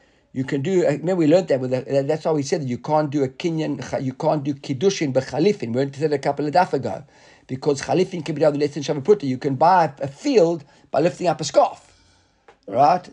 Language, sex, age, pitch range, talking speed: English, male, 50-69, 135-170 Hz, 250 wpm